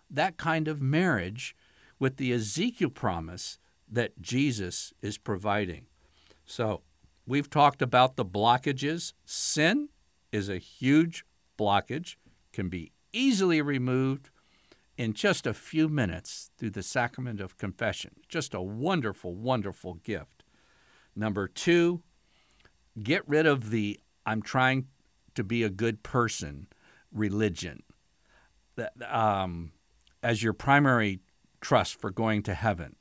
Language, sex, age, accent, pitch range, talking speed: English, male, 60-79, American, 95-130 Hz, 120 wpm